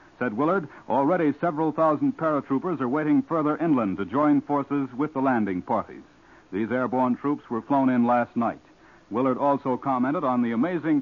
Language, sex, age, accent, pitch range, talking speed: English, male, 60-79, American, 125-155 Hz, 170 wpm